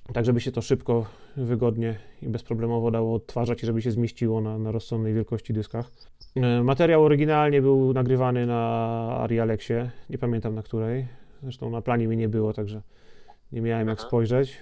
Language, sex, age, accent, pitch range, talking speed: Polish, male, 30-49, native, 115-130 Hz, 170 wpm